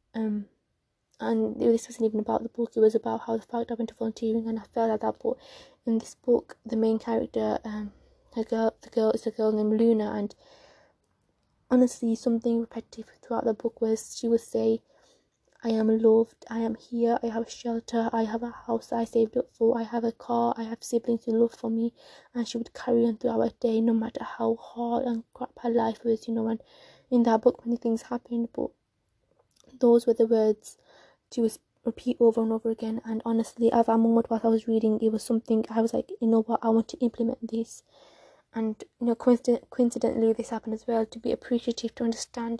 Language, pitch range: English, 225-235 Hz